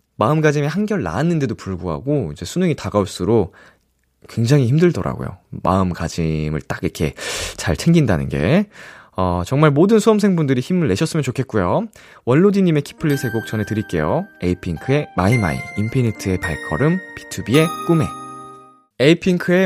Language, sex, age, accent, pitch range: Korean, male, 20-39, native, 95-155 Hz